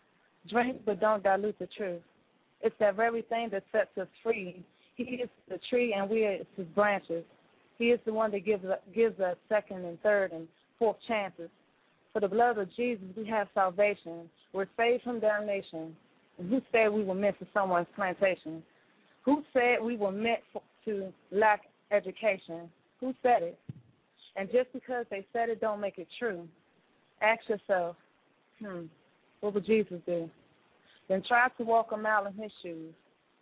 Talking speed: 170 wpm